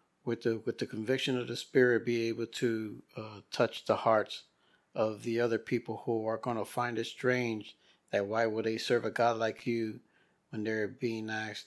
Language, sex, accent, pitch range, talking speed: Spanish, male, American, 105-120 Hz, 200 wpm